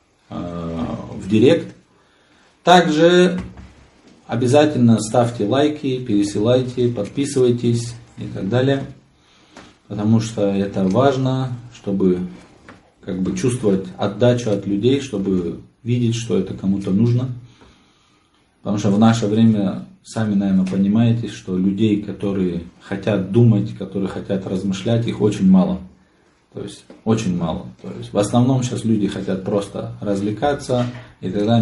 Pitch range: 95-120 Hz